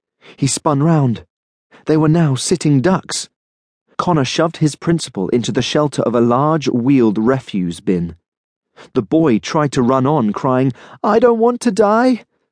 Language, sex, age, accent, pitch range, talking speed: English, male, 30-49, British, 110-155 Hz, 160 wpm